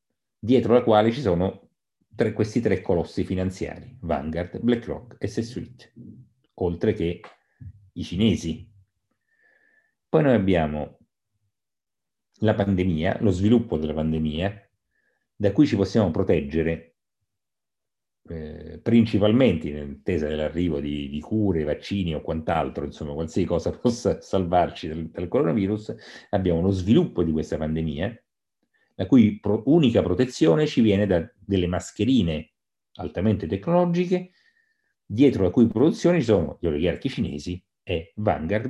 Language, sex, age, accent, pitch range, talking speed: Italian, male, 40-59, native, 85-115 Hz, 120 wpm